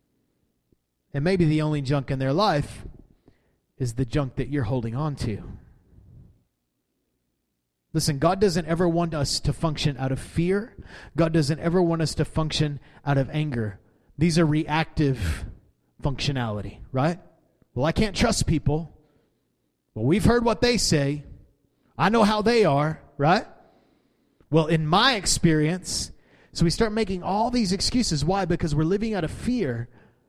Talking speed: 155 wpm